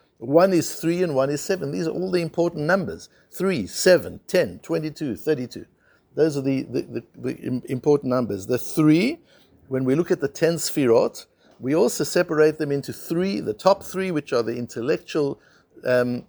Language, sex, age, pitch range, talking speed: English, male, 60-79, 135-170 Hz, 180 wpm